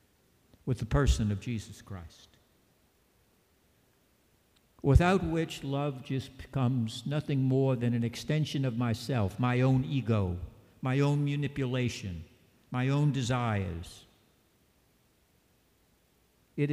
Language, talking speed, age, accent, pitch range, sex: English, 100 wpm, 60-79, American, 110-145 Hz, male